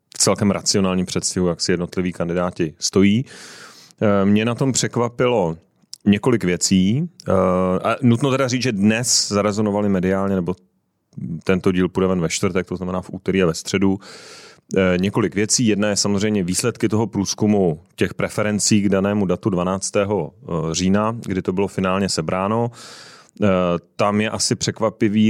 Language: Czech